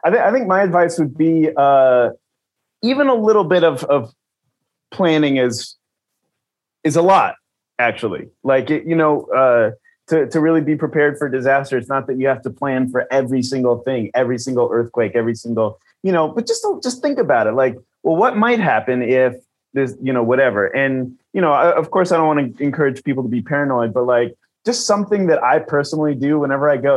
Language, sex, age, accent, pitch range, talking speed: English, male, 30-49, American, 130-185 Hz, 210 wpm